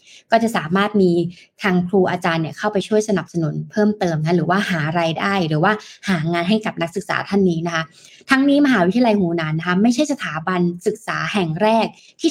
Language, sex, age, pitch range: Thai, female, 20-39, 175-215 Hz